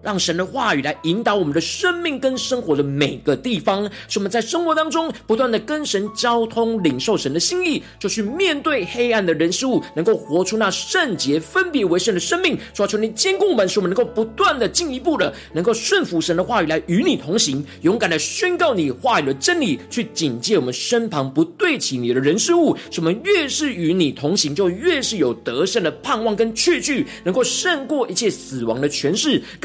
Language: Chinese